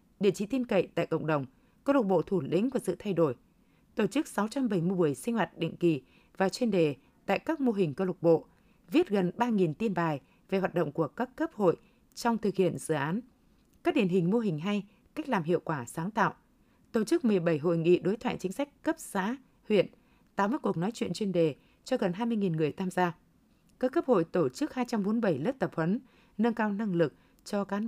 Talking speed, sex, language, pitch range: 220 wpm, female, Vietnamese, 170-235 Hz